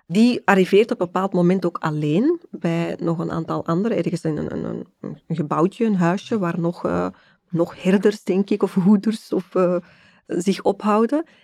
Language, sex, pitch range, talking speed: Dutch, female, 170-210 Hz, 180 wpm